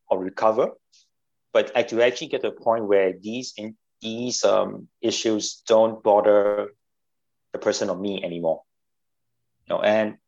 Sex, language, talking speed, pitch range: male, English, 150 wpm, 100-120 Hz